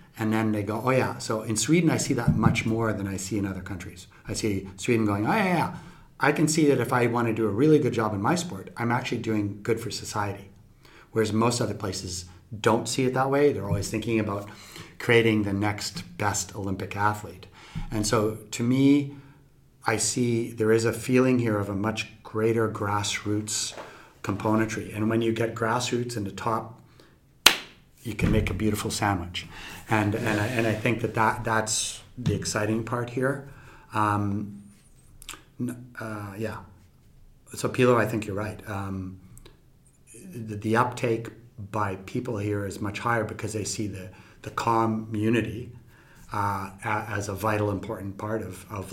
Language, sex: Swedish, male